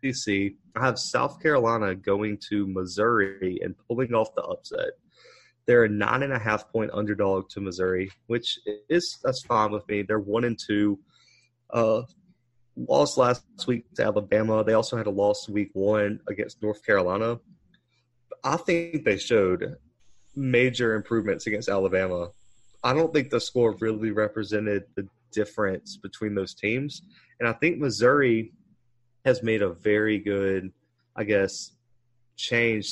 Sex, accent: male, American